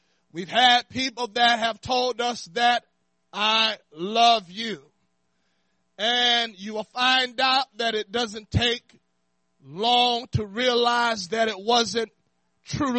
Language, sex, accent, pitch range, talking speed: English, male, American, 210-260 Hz, 125 wpm